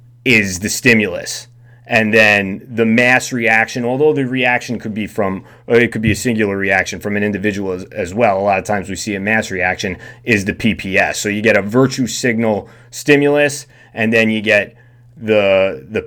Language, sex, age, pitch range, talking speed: English, male, 30-49, 105-120 Hz, 190 wpm